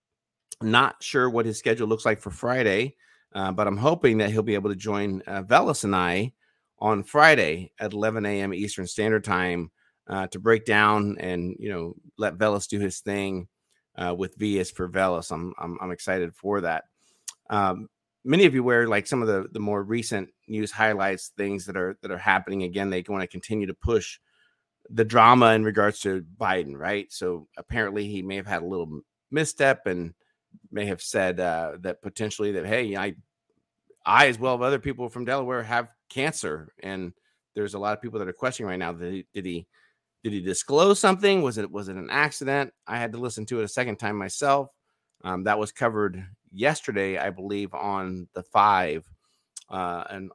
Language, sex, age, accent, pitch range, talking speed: English, male, 30-49, American, 95-110 Hz, 195 wpm